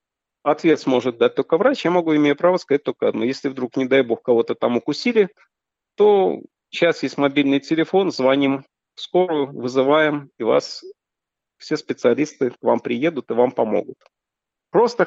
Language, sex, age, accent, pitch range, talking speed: Russian, male, 50-69, native, 130-170 Hz, 160 wpm